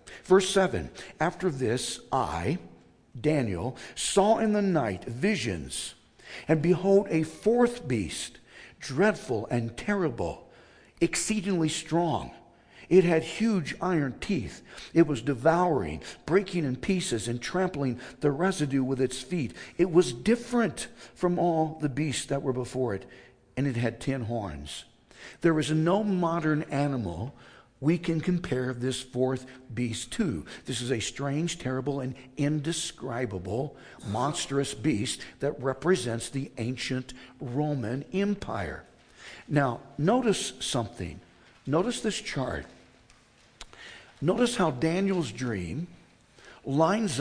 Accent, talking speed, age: American, 120 wpm, 60-79